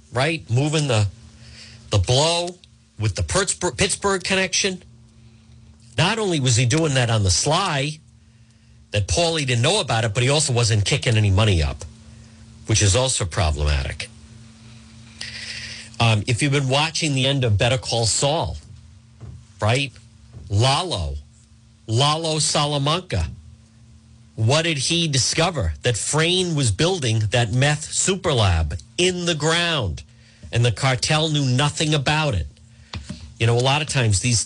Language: English